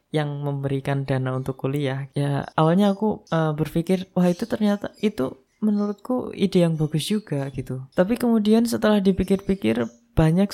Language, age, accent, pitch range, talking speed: Indonesian, 20-39, native, 145-185 Hz, 140 wpm